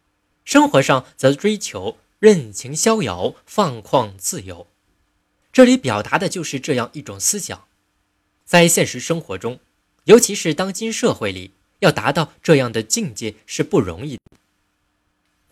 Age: 20-39